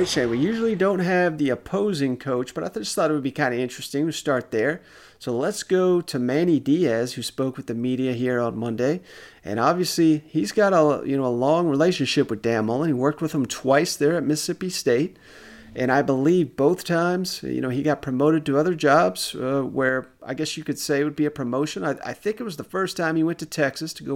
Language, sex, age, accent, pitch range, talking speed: English, male, 40-59, American, 125-155 Hz, 230 wpm